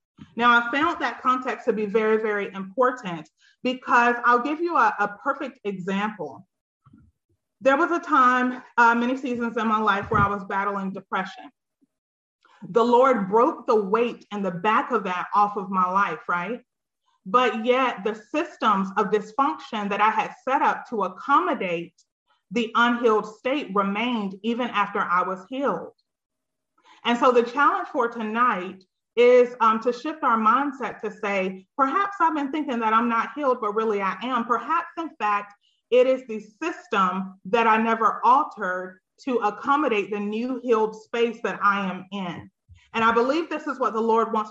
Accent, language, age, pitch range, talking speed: American, English, 30-49, 205-255 Hz, 170 wpm